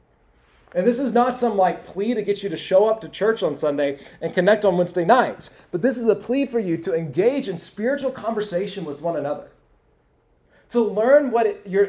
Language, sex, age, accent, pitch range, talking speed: English, male, 30-49, American, 175-225 Hz, 205 wpm